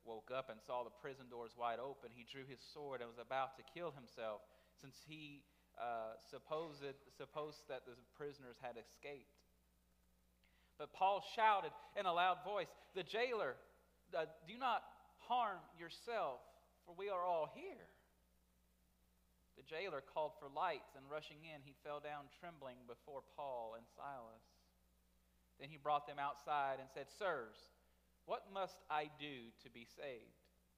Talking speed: 155 wpm